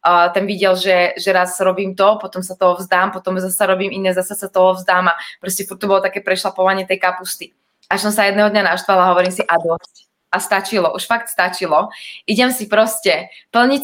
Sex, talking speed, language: female, 200 wpm, Czech